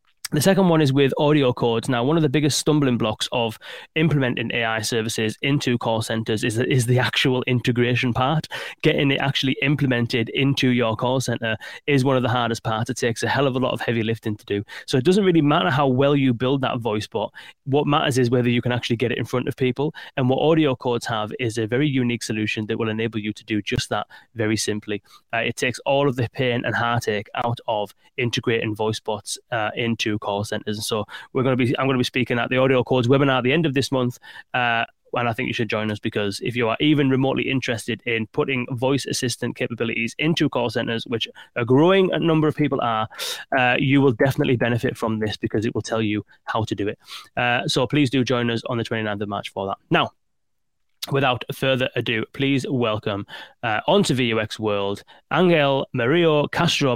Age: 20-39